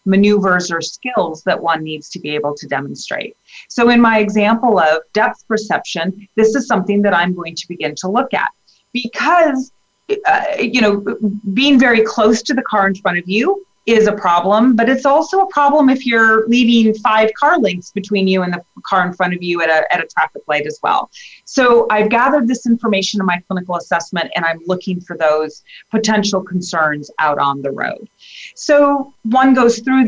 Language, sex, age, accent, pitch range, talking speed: English, female, 30-49, American, 180-230 Hz, 195 wpm